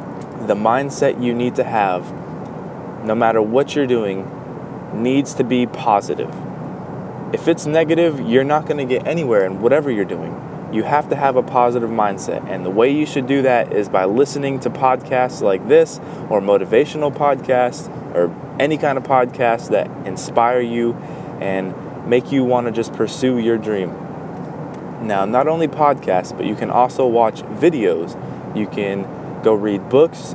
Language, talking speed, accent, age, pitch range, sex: English, 165 wpm, American, 20-39, 105-135 Hz, male